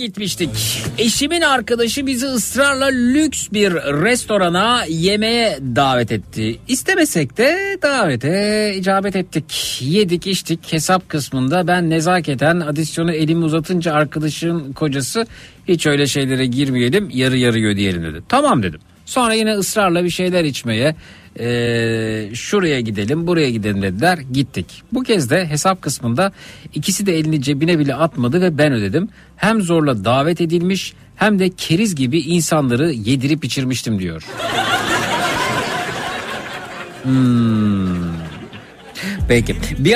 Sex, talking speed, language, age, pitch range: male, 120 wpm, Turkish, 50-69, 130-195 Hz